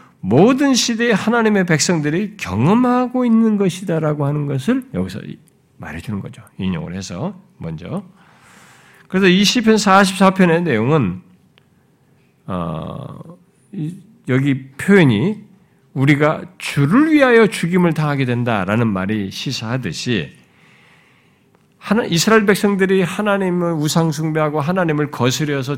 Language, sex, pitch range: Korean, male, 140-205 Hz